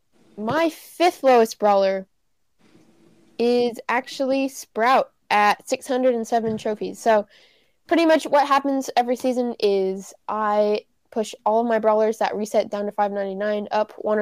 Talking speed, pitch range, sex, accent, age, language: 130 wpm, 205-245 Hz, female, American, 10-29, English